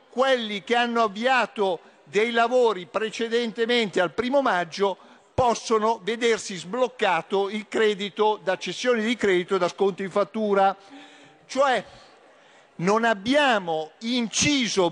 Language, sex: Italian, male